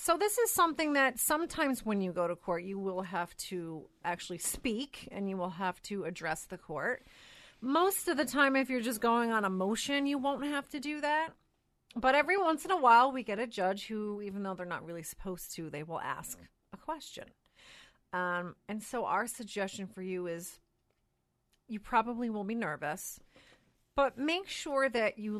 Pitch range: 185-265 Hz